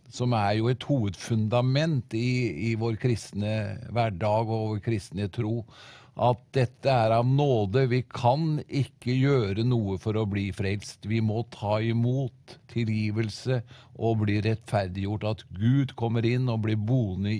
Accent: Swedish